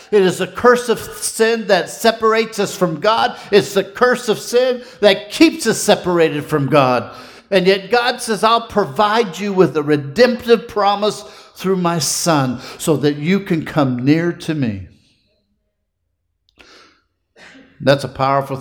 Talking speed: 150 wpm